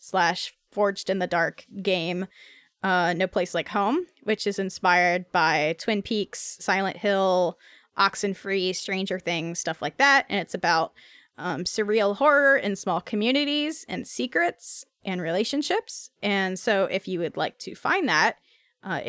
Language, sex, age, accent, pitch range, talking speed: English, female, 10-29, American, 180-225 Hz, 150 wpm